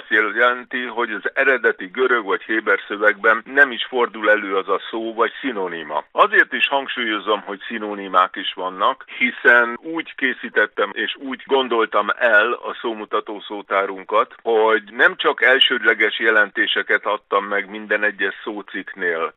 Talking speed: 140 wpm